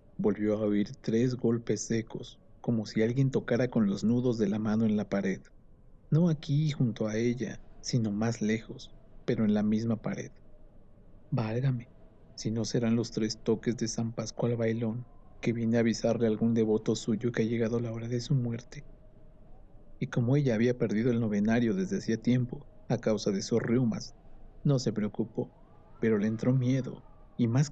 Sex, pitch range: male, 110-125 Hz